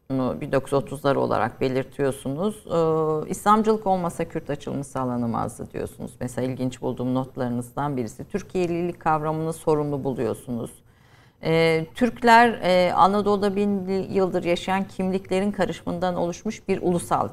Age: 50-69